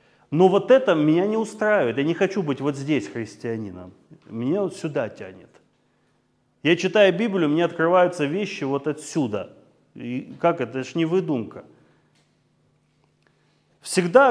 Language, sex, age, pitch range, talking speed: Russian, male, 30-49, 120-170 Hz, 140 wpm